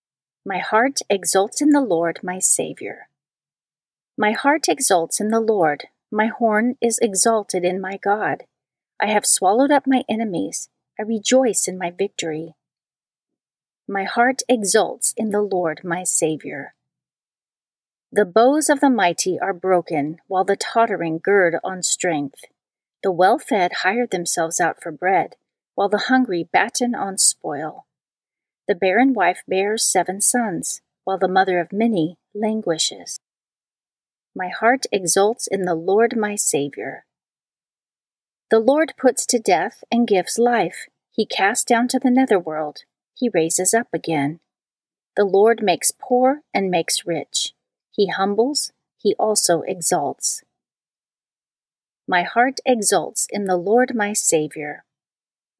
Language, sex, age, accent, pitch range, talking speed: English, female, 40-59, American, 180-240 Hz, 135 wpm